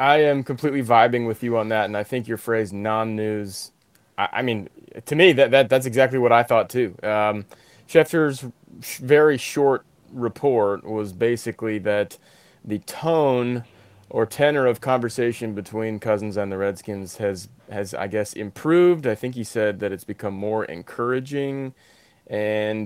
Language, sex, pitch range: English, male, 105-130 Hz